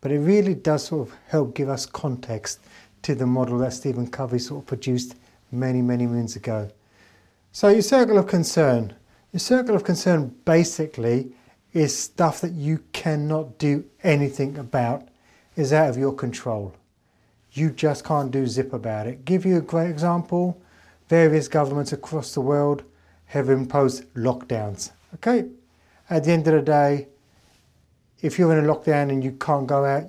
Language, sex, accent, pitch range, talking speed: English, male, British, 125-165 Hz, 165 wpm